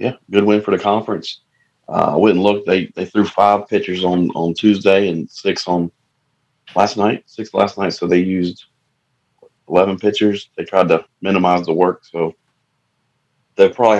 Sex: male